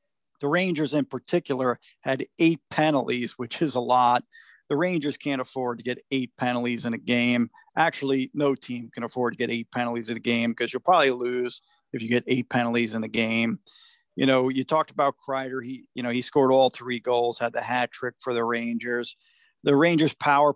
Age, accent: 40-59, American